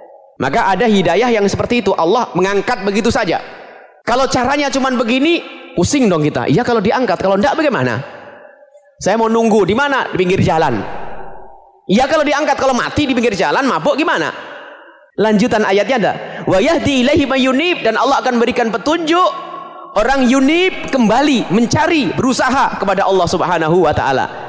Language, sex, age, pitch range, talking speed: English, male, 30-49, 175-260 Hz, 155 wpm